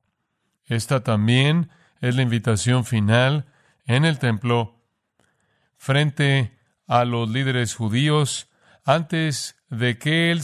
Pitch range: 115-135 Hz